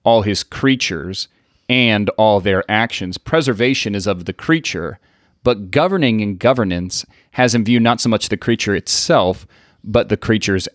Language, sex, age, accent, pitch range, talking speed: English, male, 30-49, American, 100-120 Hz, 155 wpm